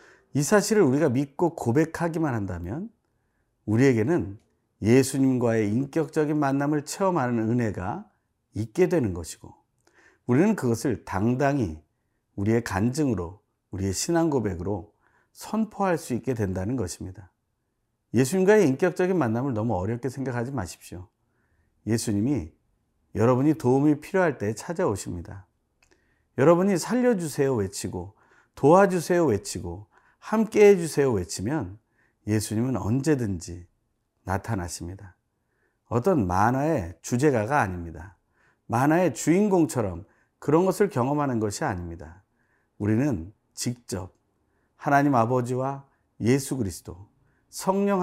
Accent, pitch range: native, 100-145 Hz